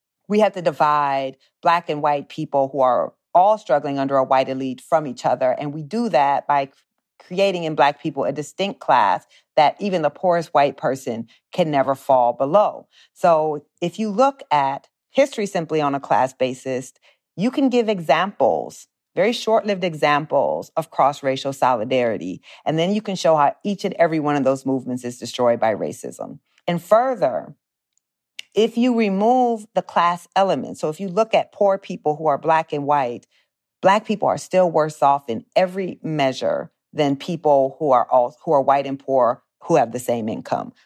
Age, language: 40-59, English